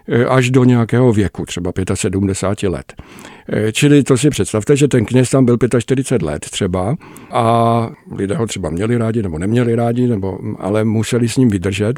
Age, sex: 50-69, male